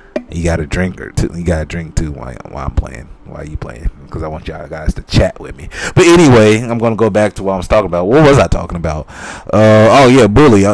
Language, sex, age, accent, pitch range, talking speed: English, male, 30-49, American, 85-110 Hz, 275 wpm